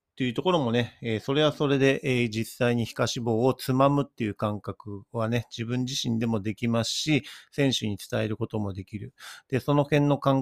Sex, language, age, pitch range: male, Japanese, 40-59, 110-140 Hz